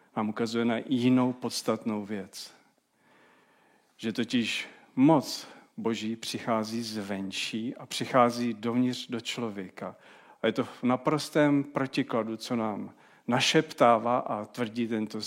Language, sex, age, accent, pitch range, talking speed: Czech, male, 40-59, native, 115-135 Hz, 120 wpm